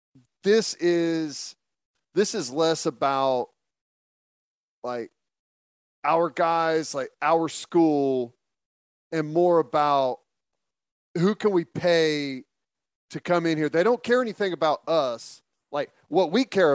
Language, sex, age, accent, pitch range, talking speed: English, male, 40-59, American, 140-175 Hz, 120 wpm